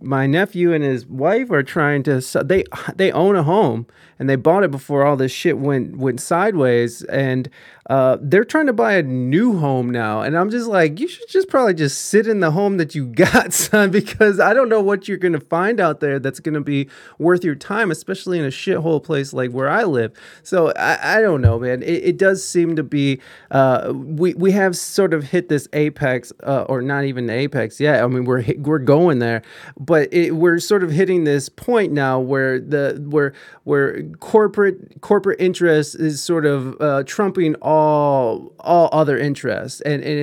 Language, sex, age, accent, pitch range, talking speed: English, male, 30-49, American, 135-185 Hz, 205 wpm